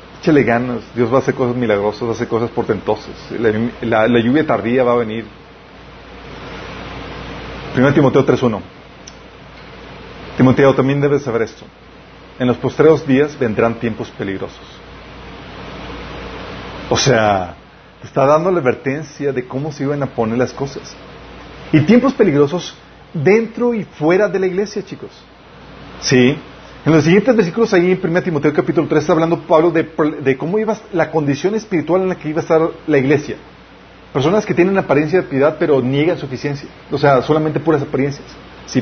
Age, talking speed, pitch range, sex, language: 40-59, 160 wpm, 130-175 Hz, male, Spanish